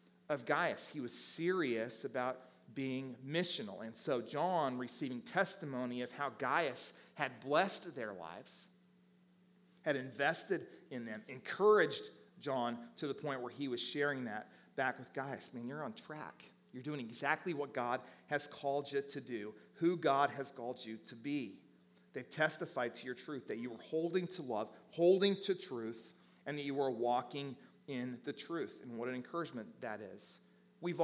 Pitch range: 125-175 Hz